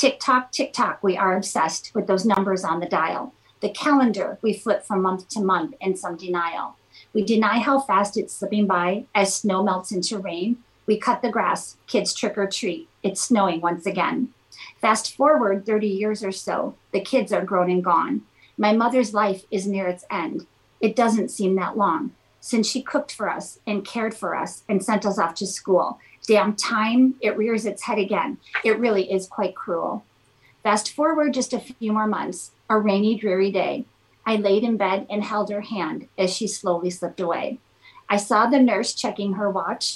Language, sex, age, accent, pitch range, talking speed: English, female, 40-59, American, 190-225 Hz, 190 wpm